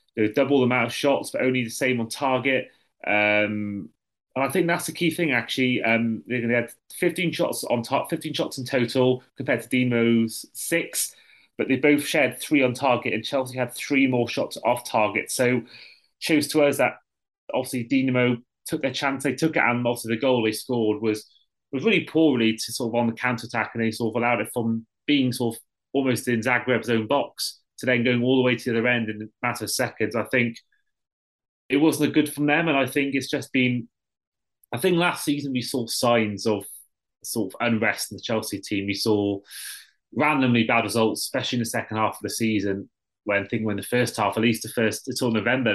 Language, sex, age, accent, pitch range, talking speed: English, male, 30-49, British, 115-135 Hz, 220 wpm